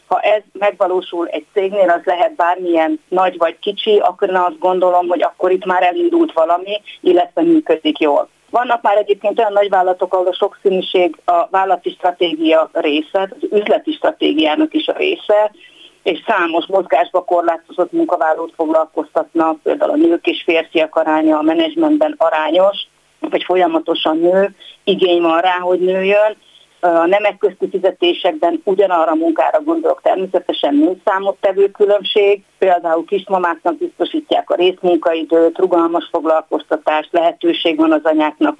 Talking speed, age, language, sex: 140 wpm, 40-59, Hungarian, female